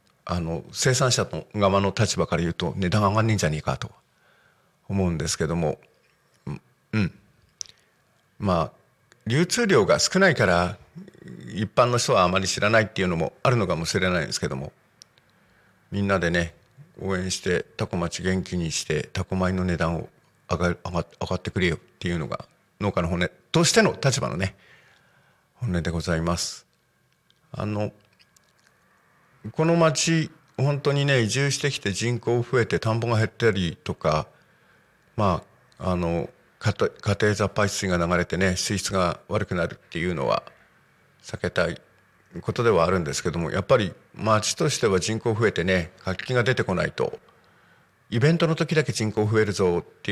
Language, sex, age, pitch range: Japanese, male, 50-69, 90-115 Hz